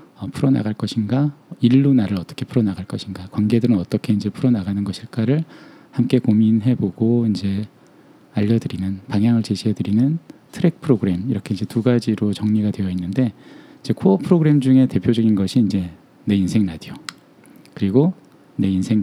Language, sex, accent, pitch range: Korean, male, native, 100-130 Hz